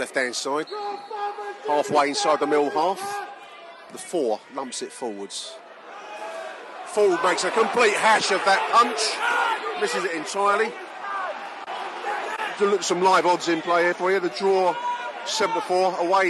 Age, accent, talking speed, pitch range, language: 40-59, British, 135 wpm, 145-205 Hz, English